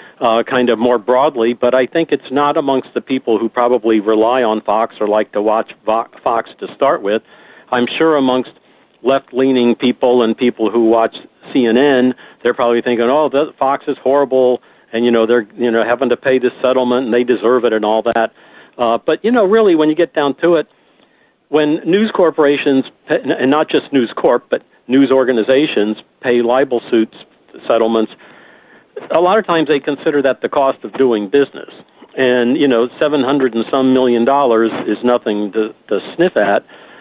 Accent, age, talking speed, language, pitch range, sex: American, 50-69, 190 wpm, English, 120-145 Hz, male